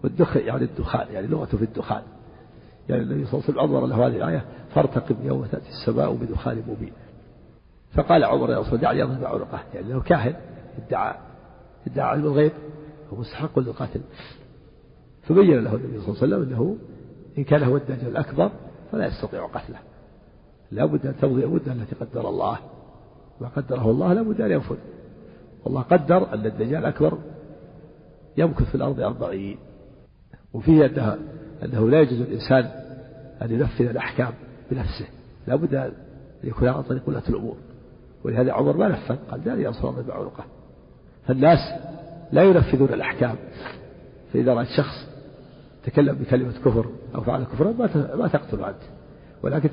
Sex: male